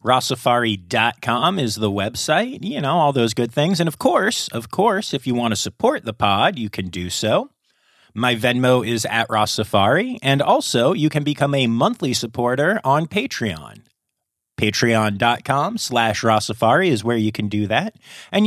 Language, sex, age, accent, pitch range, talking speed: English, male, 30-49, American, 105-140 Hz, 165 wpm